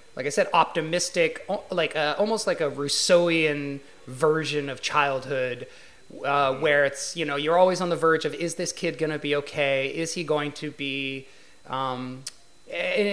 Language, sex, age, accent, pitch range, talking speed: English, male, 30-49, American, 135-175 Hz, 165 wpm